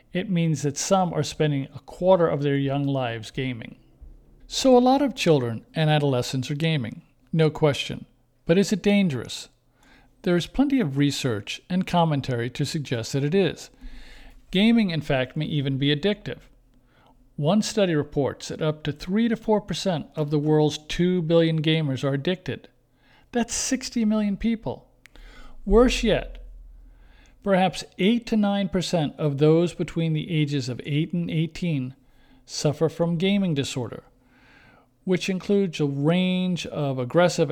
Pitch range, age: 135-185 Hz, 50-69